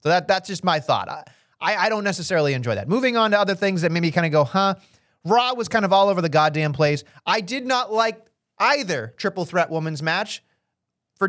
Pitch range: 165-230 Hz